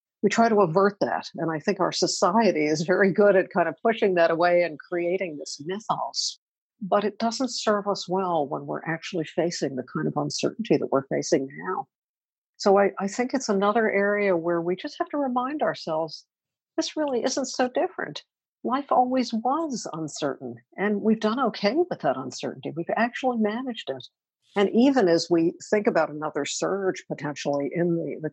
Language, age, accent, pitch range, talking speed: English, 60-79, American, 160-220 Hz, 185 wpm